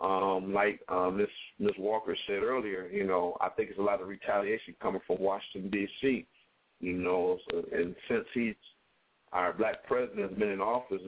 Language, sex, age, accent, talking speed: English, male, 50-69, American, 175 wpm